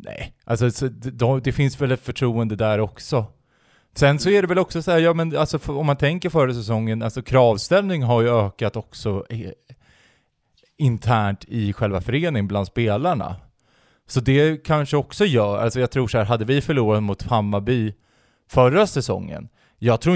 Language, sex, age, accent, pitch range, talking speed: Swedish, male, 20-39, native, 105-130 Hz, 180 wpm